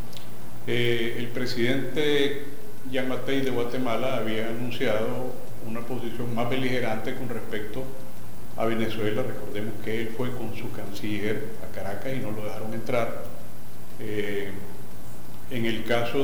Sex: male